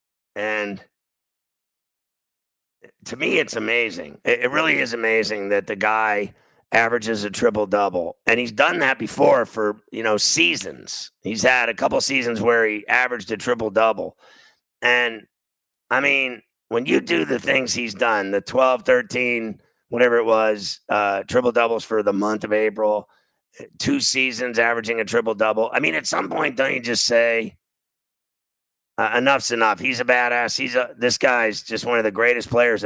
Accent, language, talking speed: American, English, 160 wpm